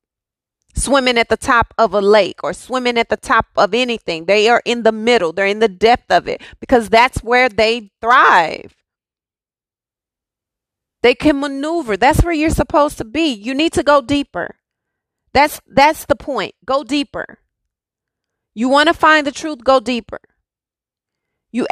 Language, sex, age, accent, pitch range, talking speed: English, female, 30-49, American, 235-290 Hz, 165 wpm